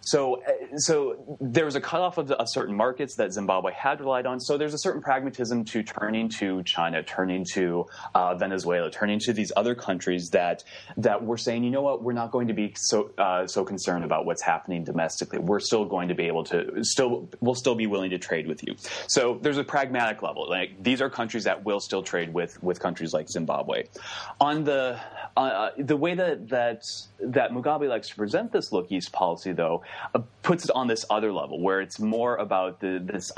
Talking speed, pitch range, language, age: 210 wpm, 95-125 Hz, English, 30-49